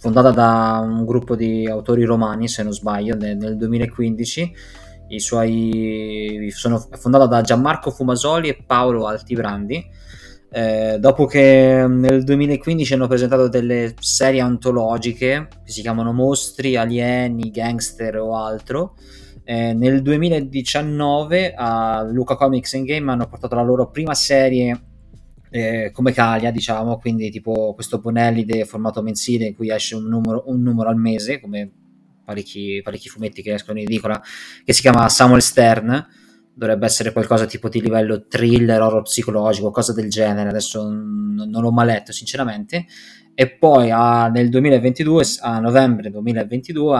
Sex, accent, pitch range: male, native, 110-125 Hz